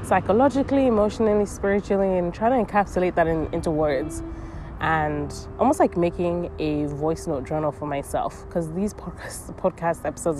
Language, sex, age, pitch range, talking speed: English, female, 20-39, 150-190 Hz, 140 wpm